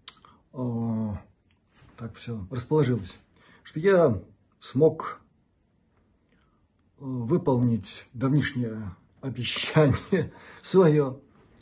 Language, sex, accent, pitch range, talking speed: Russian, male, native, 110-150 Hz, 50 wpm